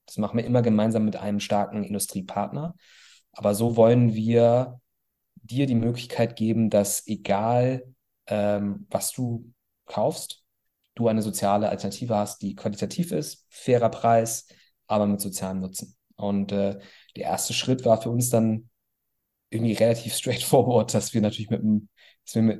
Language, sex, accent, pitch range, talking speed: German, male, German, 100-120 Hz, 145 wpm